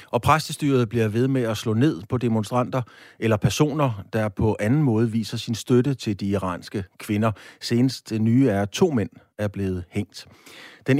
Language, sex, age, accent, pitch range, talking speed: Danish, male, 30-49, native, 100-130 Hz, 170 wpm